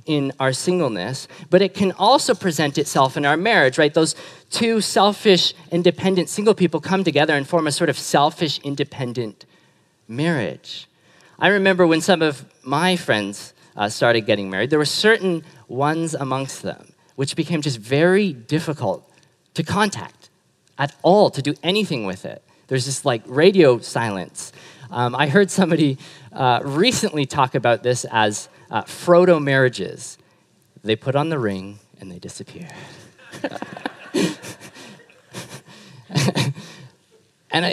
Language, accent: English, American